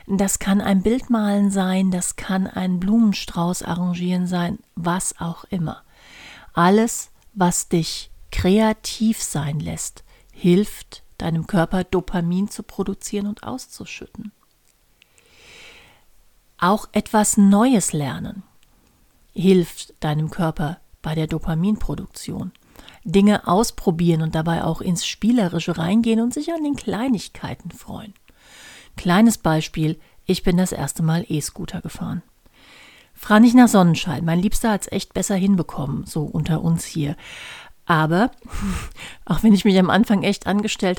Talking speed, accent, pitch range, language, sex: 125 wpm, German, 170-215 Hz, German, female